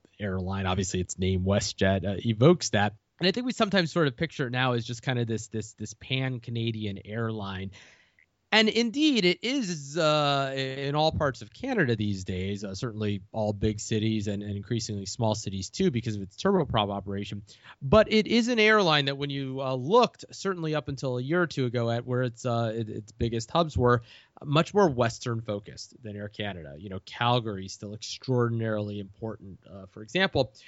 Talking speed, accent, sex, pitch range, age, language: 190 wpm, American, male, 105-135 Hz, 30-49, English